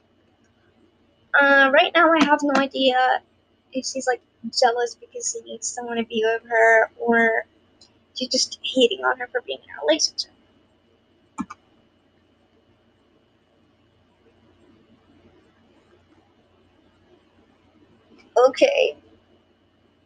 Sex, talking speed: male, 95 wpm